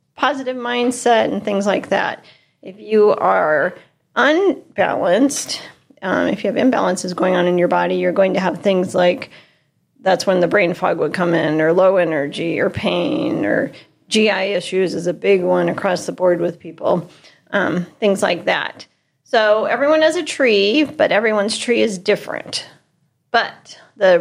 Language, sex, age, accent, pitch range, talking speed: English, female, 40-59, American, 180-235 Hz, 165 wpm